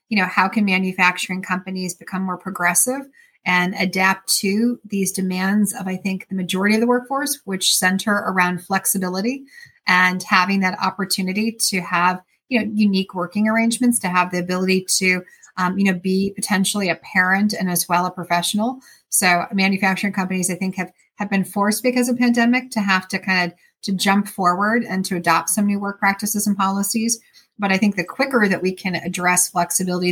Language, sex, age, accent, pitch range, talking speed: English, female, 30-49, American, 180-205 Hz, 185 wpm